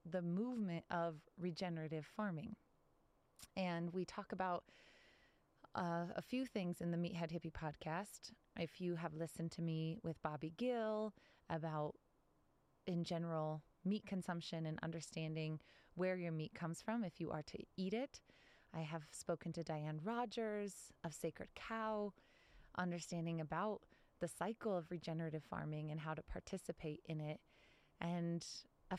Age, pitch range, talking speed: 20-39, 165-210 Hz, 145 wpm